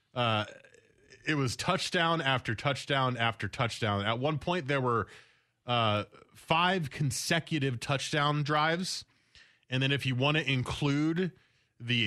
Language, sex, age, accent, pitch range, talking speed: English, male, 20-39, American, 110-150 Hz, 130 wpm